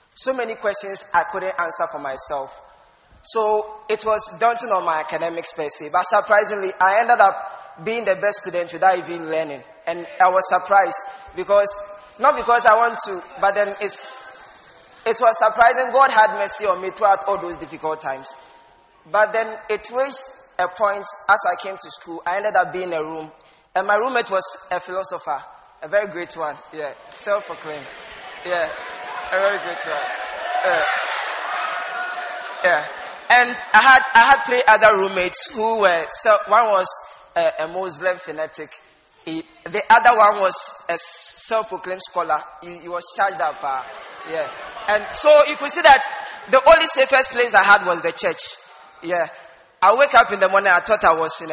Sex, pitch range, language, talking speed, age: male, 170-225 Hz, English, 175 wpm, 20-39